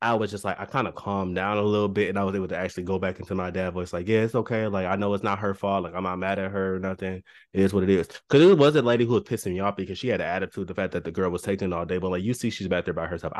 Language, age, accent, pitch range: English, 20-39, American, 95-130 Hz